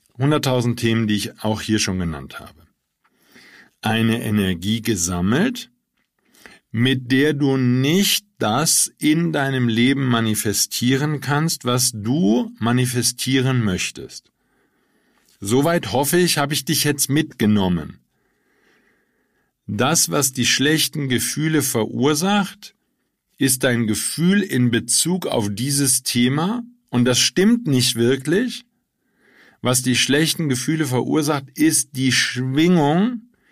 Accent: German